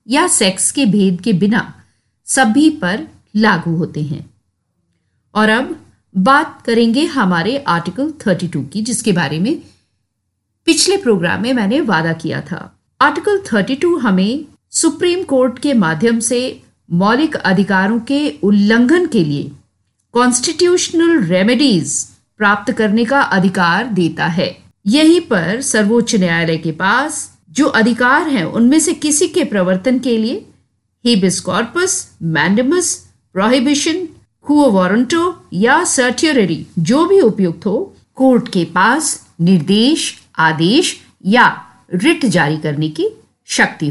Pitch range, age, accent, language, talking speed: 185-290 Hz, 50-69, native, Hindi, 120 wpm